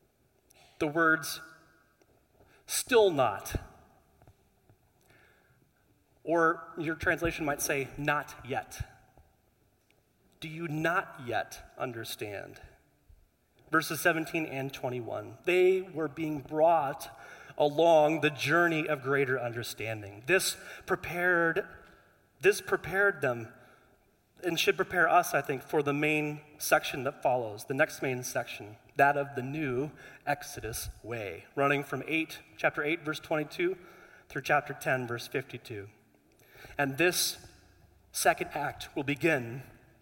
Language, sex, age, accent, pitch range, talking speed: English, male, 30-49, American, 120-160 Hz, 110 wpm